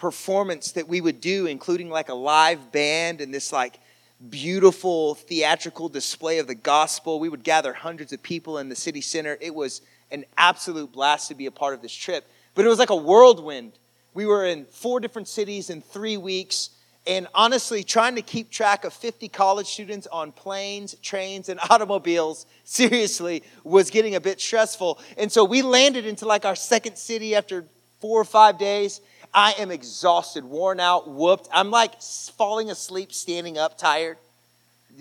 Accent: American